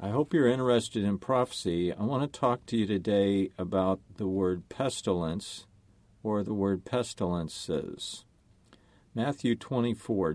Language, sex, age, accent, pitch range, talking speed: English, male, 50-69, American, 95-120 Hz, 135 wpm